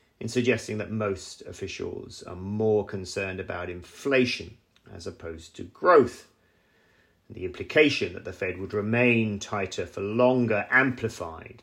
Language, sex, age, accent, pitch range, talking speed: English, male, 40-59, British, 100-125 Hz, 130 wpm